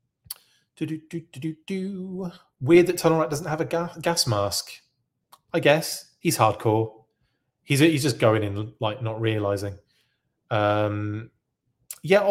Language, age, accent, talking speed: English, 30-49, British, 145 wpm